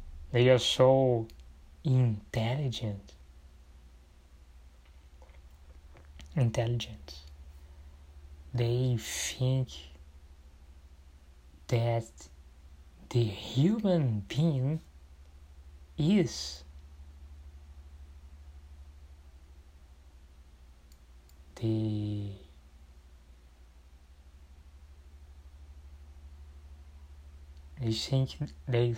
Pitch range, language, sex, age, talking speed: 70-120 Hz, Portuguese, male, 30-49, 35 wpm